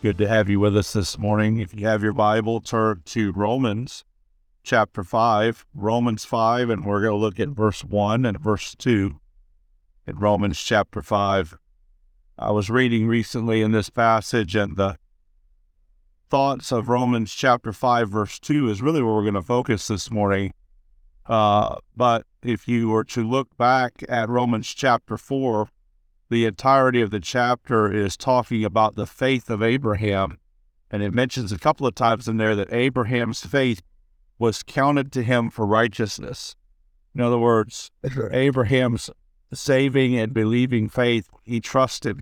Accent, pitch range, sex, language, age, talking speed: American, 100-125 Hz, male, English, 50-69, 155 wpm